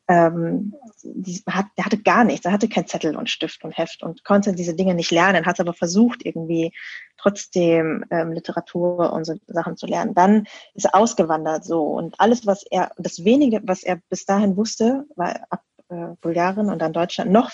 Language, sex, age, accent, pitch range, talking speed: German, female, 20-39, German, 170-205 Hz, 190 wpm